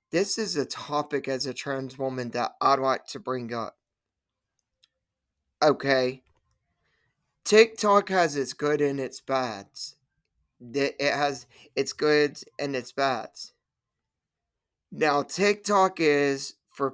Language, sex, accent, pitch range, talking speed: English, male, American, 130-150 Hz, 115 wpm